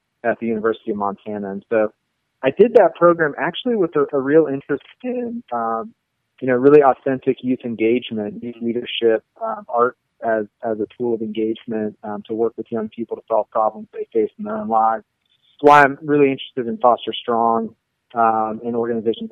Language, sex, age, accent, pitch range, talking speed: English, male, 30-49, American, 110-140 Hz, 190 wpm